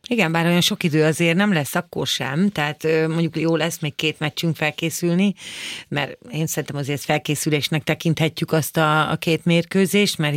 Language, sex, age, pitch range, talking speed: Hungarian, female, 30-49, 155-180 Hz, 175 wpm